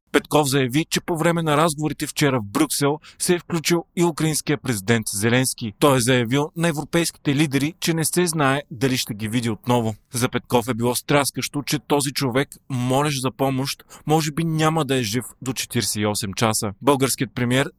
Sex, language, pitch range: male, Bulgarian, 125-155 Hz